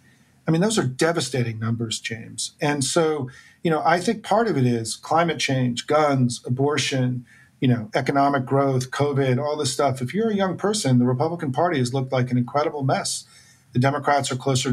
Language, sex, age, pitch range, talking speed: English, male, 40-59, 125-145 Hz, 190 wpm